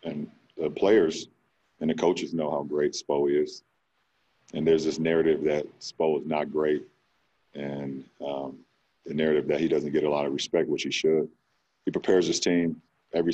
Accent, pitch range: American, 75-85 Hz